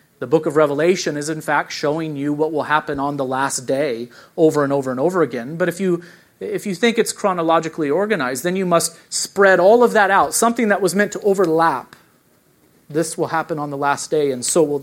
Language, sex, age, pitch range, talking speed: English, male, 30-49, 140-180 Hz, 225 wpm